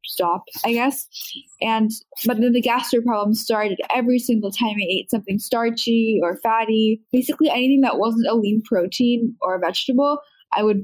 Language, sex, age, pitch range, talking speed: English, female, 10-29, 205-240 Hz, 170 wpm